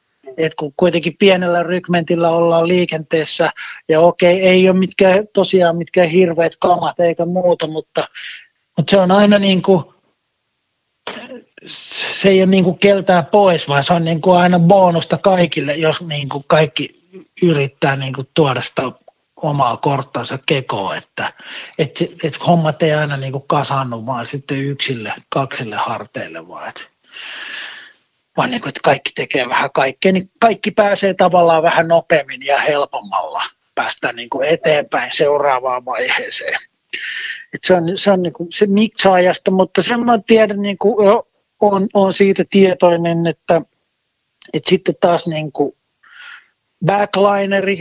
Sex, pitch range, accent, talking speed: male, 165-195 Hz, native, 135 wpm